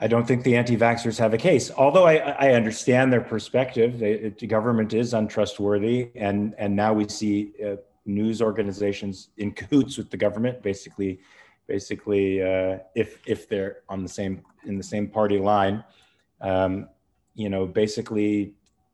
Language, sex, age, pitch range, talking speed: English, male, 30-49, 100-120 Hz, 160 wpm